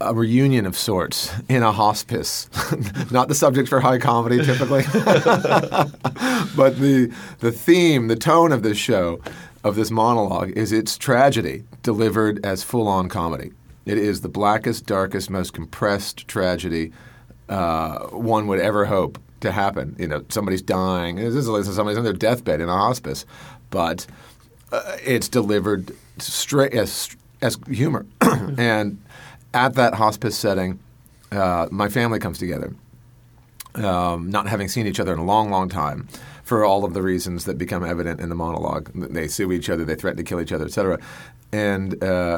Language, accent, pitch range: English, American, 95-120 Hz